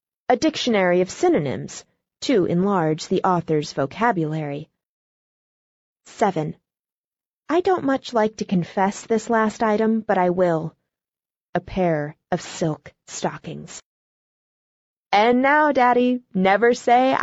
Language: Chinese